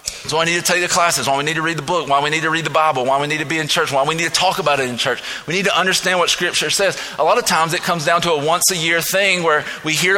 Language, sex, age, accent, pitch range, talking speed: English, male, 30-49, American, 155-190 Hz, 360 wpm